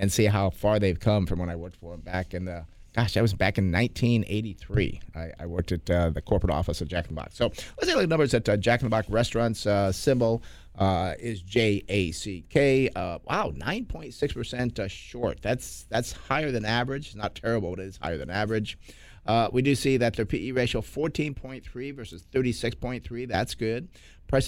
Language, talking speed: English, 200 wpm